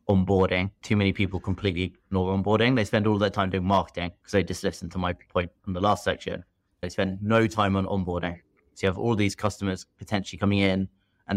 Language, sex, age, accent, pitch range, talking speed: English, male, 30-49, British, 90-100 Hz, 215 wpm